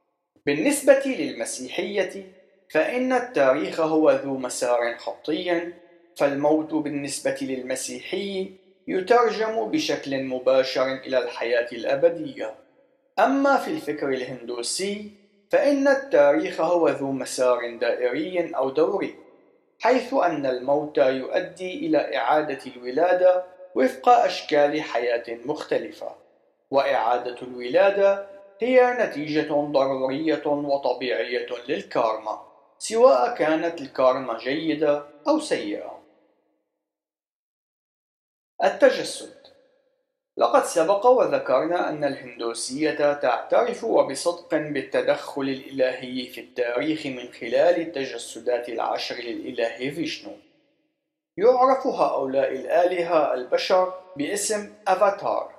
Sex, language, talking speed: male, Arabic, 85 wpm